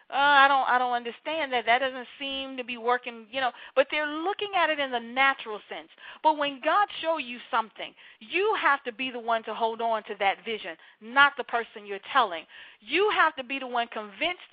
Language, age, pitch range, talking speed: English, 40-59, 235-310 Hz, 225 wpm